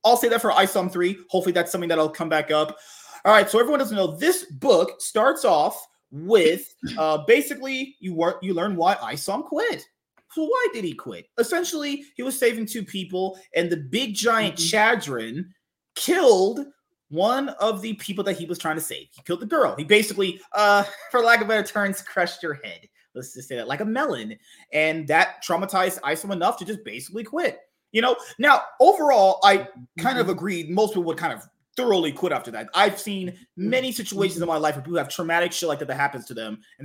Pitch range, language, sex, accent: 170-235 Hz, English, male, American